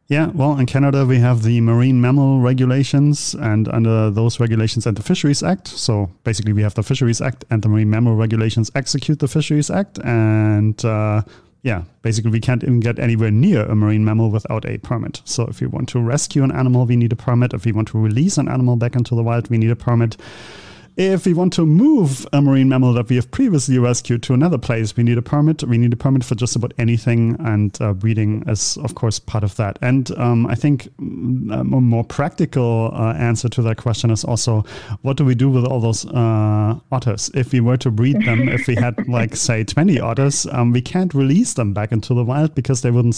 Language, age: English, 30-49